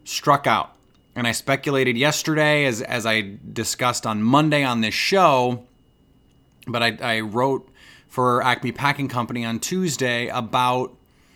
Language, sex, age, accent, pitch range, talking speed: English, male, 30-49, American, 115-140 Hz, 135 wpm